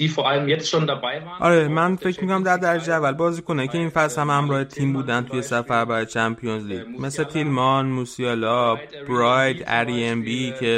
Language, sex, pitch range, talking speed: Persian, male, 115-145 Hz, 150 wpm